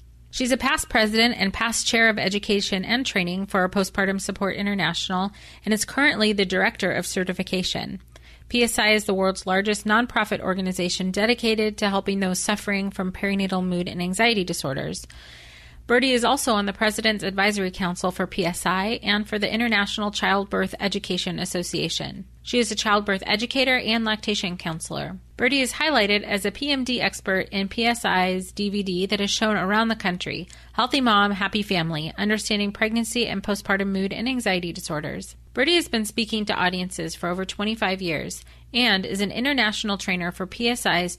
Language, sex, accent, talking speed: English, female, American, 160 wpm